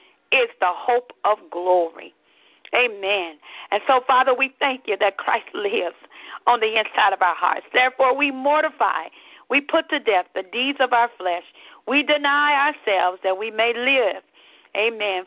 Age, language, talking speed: 50-69, English, 160 wpm